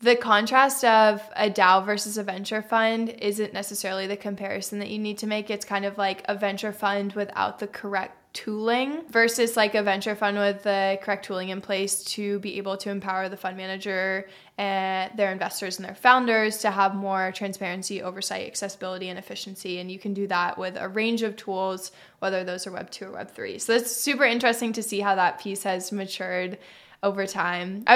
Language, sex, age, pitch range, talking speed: English, female, 20-39, 195-220 Hz, 200 wpm